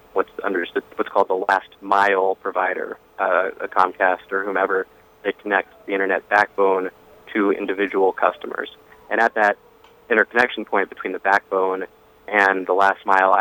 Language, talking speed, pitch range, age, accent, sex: English, 150 wpm, 90-105 Hz, 20-39, American, male